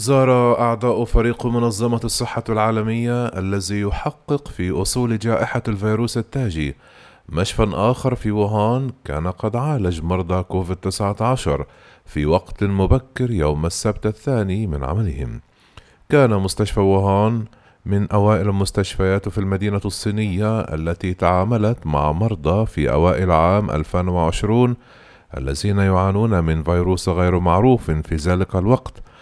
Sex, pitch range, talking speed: male, 85-110 Hz, 115 wpm